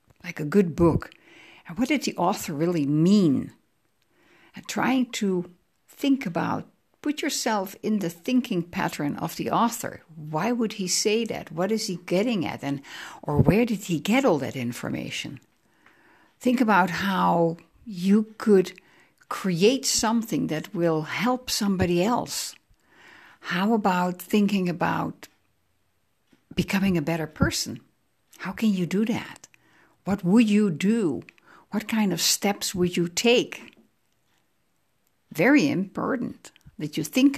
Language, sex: English, female